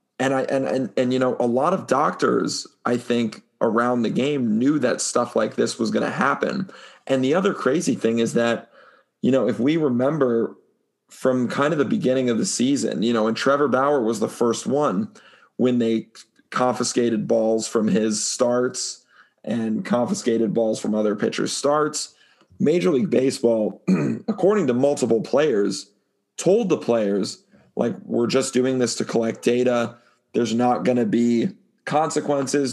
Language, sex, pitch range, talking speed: English, male, 115-135 Hz, 170 wpm